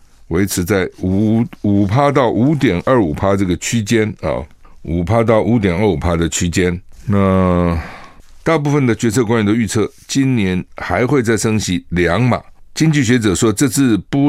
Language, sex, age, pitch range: Chinese, male, 60-79, 90-115 Hz